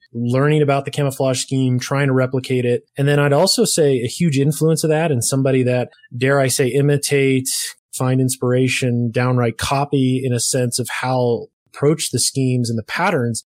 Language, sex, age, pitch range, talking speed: English, male, 20-39, 120-140 Hz, 180 wpm